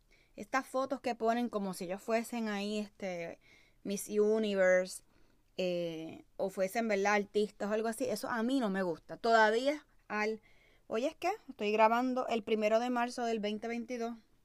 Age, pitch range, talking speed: 20-39, 205-260 Hz, 160 wpm